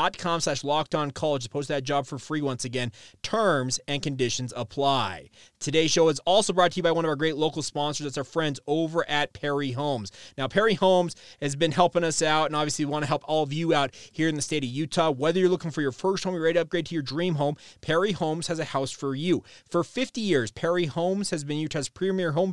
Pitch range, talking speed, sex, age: 135-170 Hz, 240 wpm, male, 30-49